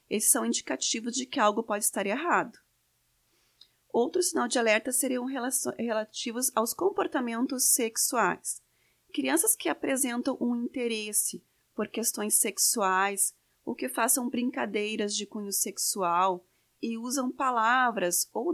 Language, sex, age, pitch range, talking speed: Portuguese, female, 30-49, 215-265 Hz, 120 wpm